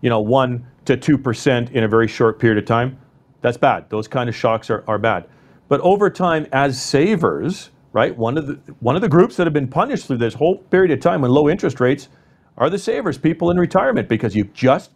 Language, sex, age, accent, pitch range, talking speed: English, male, 40-59, American, 115-145 Hz, 235 wpm